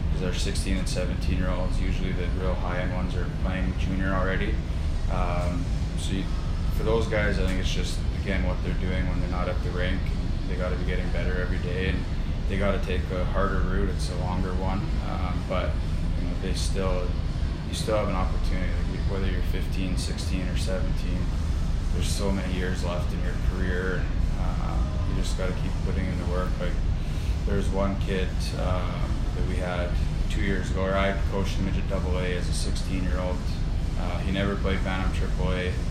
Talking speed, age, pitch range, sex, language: 195 wpm, 20-39, 80-95 Hz, male, English